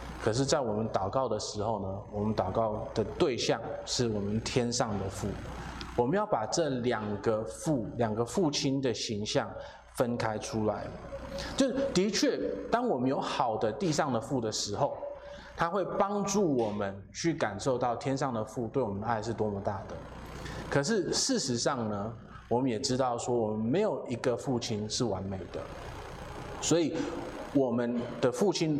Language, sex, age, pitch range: Chinese, male, 20-39, 105-140 Hz